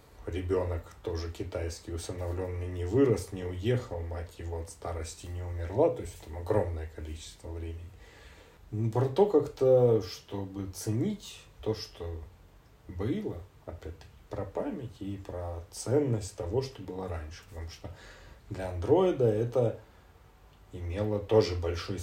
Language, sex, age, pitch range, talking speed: Russian, male, 40-59, 85-105 Hz, 130 wpm